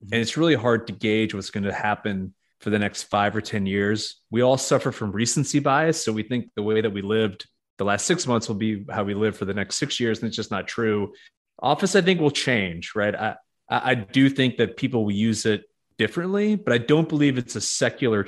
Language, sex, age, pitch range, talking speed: English, male, 30-49, 105-120 Hz, 240 wpm